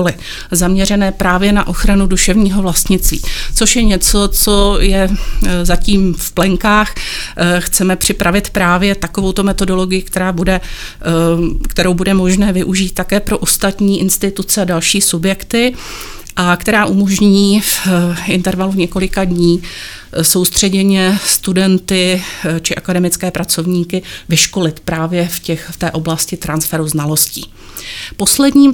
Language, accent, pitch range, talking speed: Czech, native, 175-200 Hz, 110 wpm